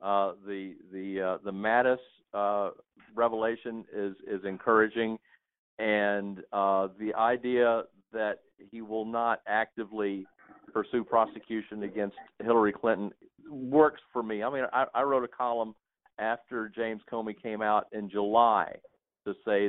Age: 50-69